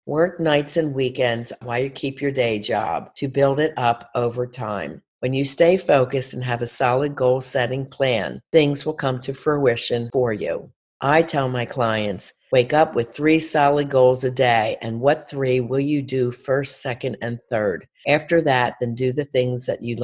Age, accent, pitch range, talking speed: 50-69, American, 120-140 Hz, 190 wpm